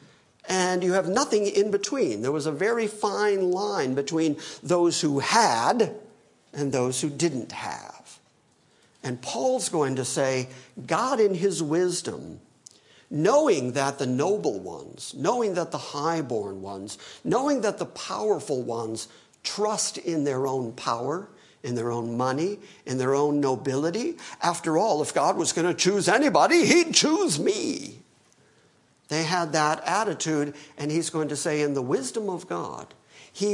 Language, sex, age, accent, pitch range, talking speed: English, male, 50-69, American, 130-185 Hz, 150 wpm